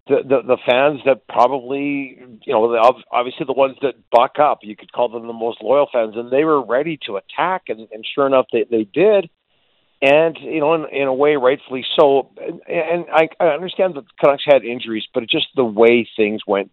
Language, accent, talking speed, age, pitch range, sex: English, American, 220 wpm, 50-69, 110-145 Hz, male